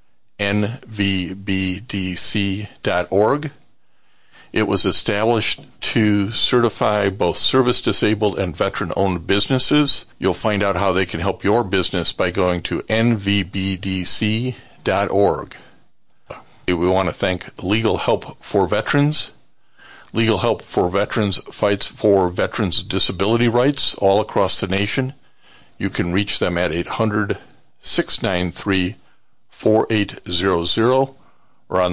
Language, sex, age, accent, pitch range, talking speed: English, male, 50-69, American, 90-115 Hz, 105 wpm